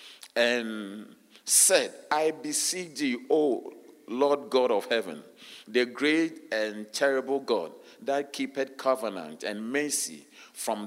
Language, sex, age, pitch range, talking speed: English, male, 50-69, 115-145 Hz, 115 wpm